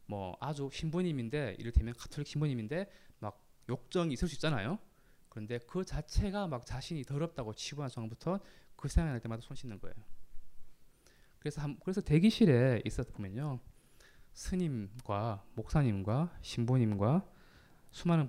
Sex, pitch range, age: male, 115-165 Hz, 20-39